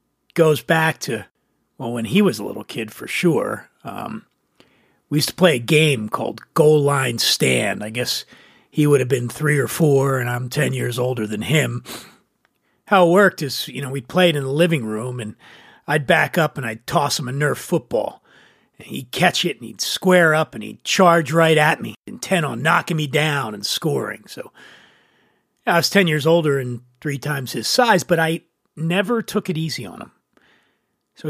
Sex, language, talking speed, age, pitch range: male, English, 200 wpm, 40-59, 135-185 Hz